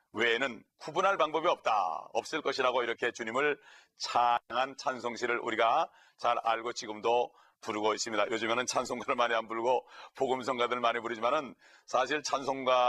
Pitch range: 120-160 Hz